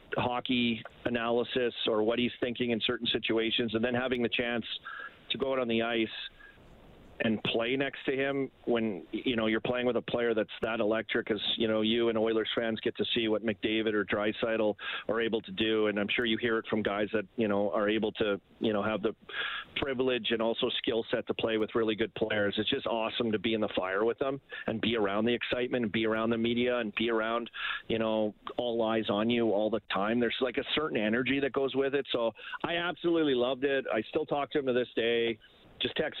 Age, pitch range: 40-59, 110-120 Hz